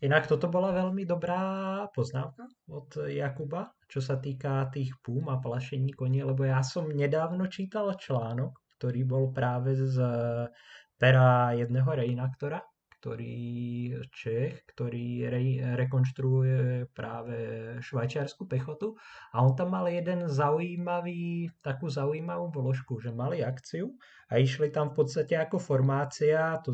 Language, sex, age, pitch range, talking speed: Slovak, male, 20-39, 130-155 Hz, 125 wpm